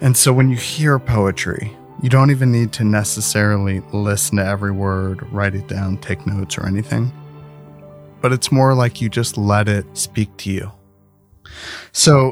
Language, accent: English, American